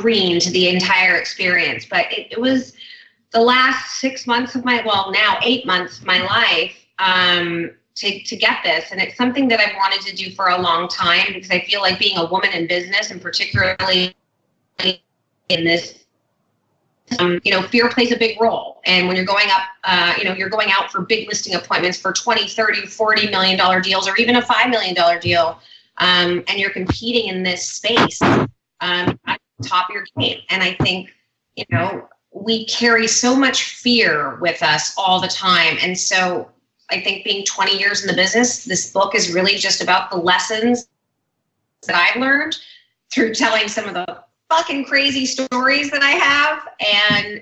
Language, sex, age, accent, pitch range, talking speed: English, female, 30-49, American, 180-230 Hz, 190 wpm